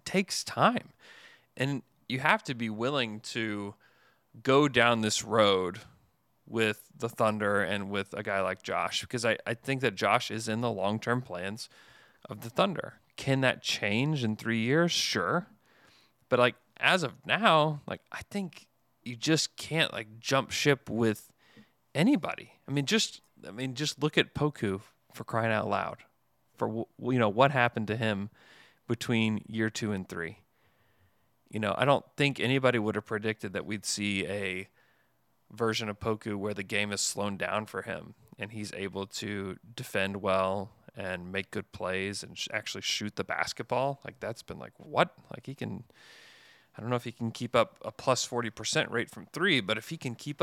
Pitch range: 105-135 Hz